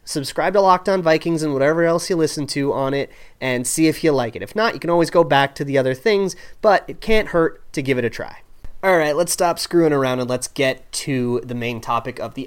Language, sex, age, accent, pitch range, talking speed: English, male, 30-49, American, 130-165 Hz, 260 wpm